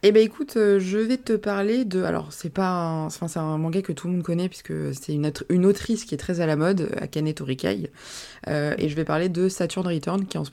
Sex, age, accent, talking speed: female, 20-39, French, 250 wpm